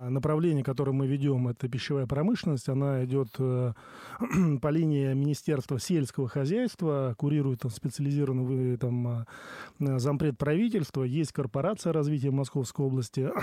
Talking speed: 100 wpm